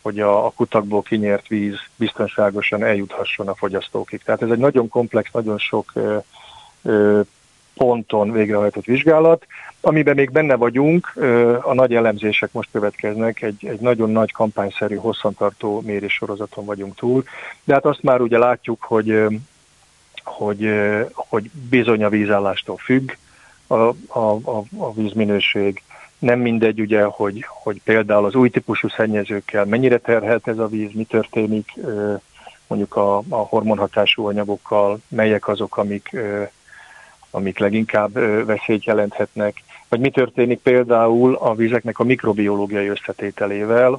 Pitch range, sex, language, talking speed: 105-120 Hz, male, Hungarian, 130 wpm